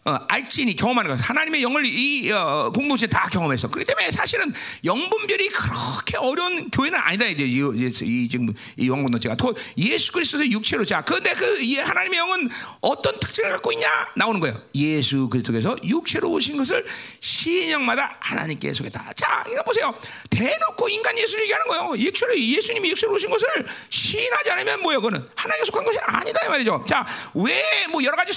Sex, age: male, 40-59